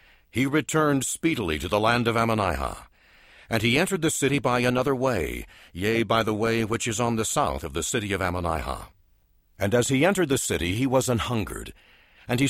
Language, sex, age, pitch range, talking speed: English, male, 60-79, 90-125 Hz, 195 wpm